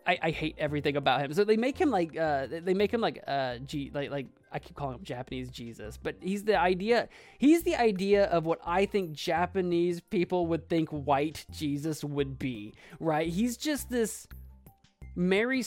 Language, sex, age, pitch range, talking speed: English, male, 20-39, 155-190 Hz, 190 wpm